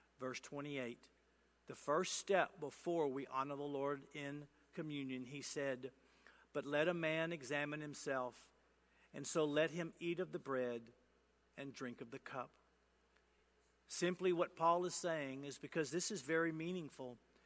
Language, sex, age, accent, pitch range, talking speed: English, male, 50-69, American, 135-175 Hz, 150 wpm